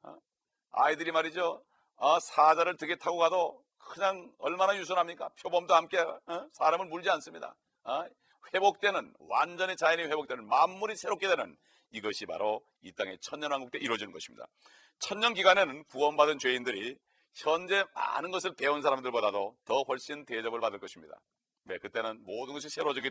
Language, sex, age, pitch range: Korean, male, 40-59, 150-195 Hz